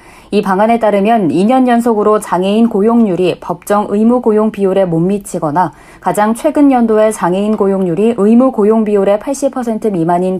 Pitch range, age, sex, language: 190-235 Hz, 30-49, female, Korean